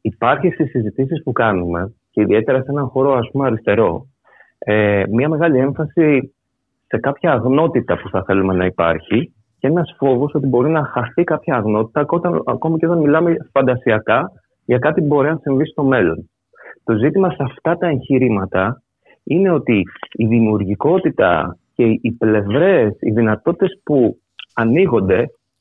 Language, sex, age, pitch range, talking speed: Greek, male, 30-49, 110-165 Hz, 150 wpm